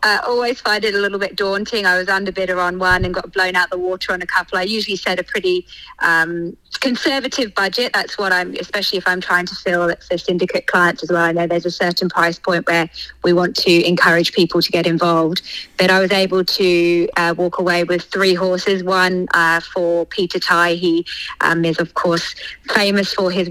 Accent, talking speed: British, 215 wpm